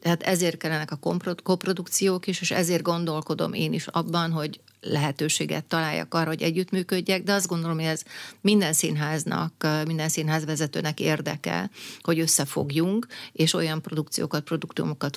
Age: 30-49